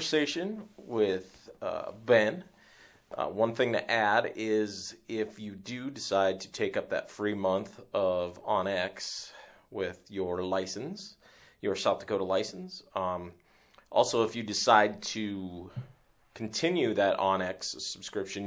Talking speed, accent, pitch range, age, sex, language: 125 wpm, American, 95-115 Hz, 30-49, male, English